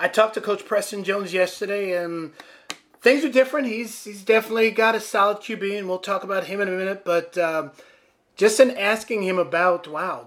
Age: 30-49